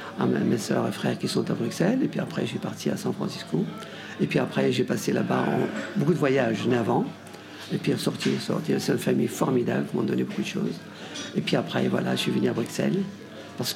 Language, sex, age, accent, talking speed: French, male, 50-69, French, 240 wpm